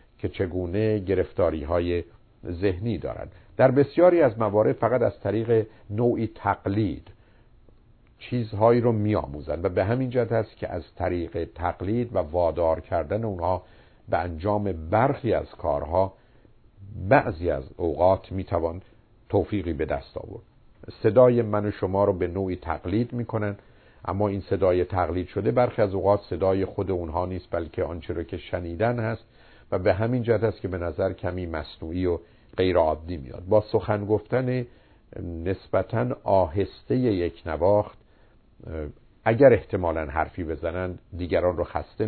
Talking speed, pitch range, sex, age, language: 140 wpm, 90-110 Hz, male, 50-69, Persian